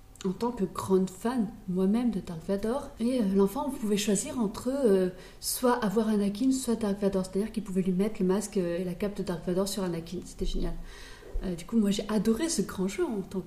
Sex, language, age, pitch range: female, French, 40-59, 190-240 Hz